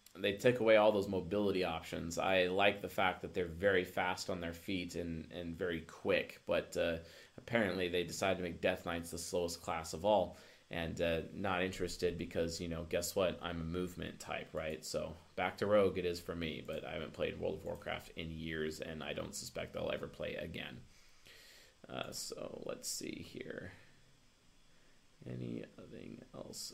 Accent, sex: American, male